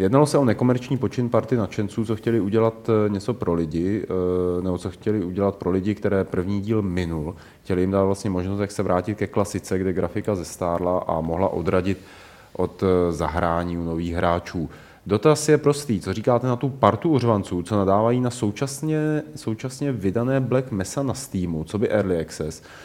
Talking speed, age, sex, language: 180 wpm, 30-49, male, Czech